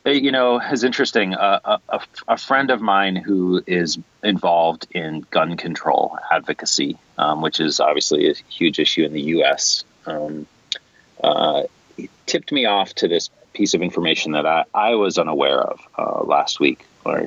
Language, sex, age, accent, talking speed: English, male, 30-49, American, 170 wpm